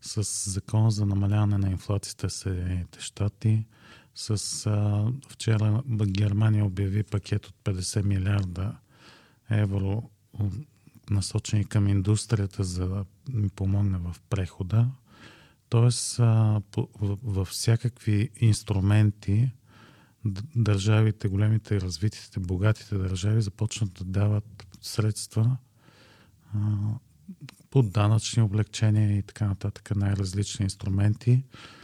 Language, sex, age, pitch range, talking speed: Bulgarian, male, 40-59, 100-115 Hz, 95 wpm